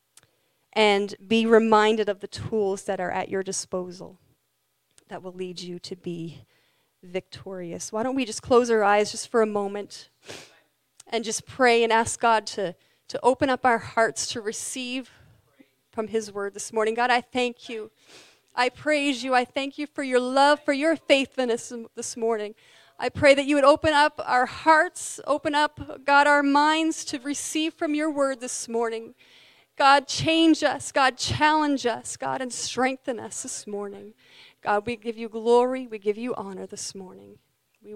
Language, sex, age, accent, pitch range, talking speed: English, female, 30-49, American, 185-255 Hz, 175 wpm